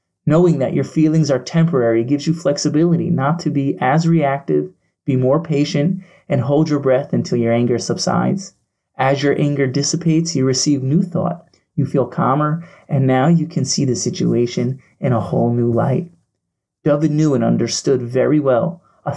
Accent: American